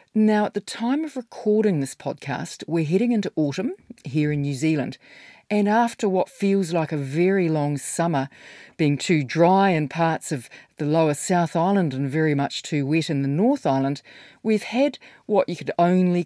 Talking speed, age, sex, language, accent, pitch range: 185 wpm, 40-59, female, English, Australian, 140-190 Hz